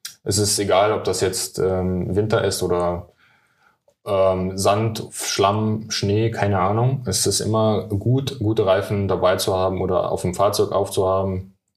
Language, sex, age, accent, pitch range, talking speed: German, male, 20-39, German, 95-115 Hz, 155 wpm